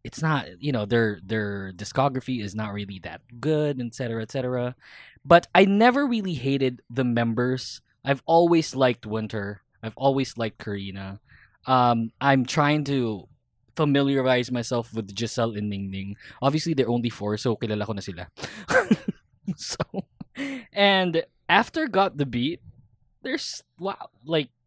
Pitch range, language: 110-150 Hz, English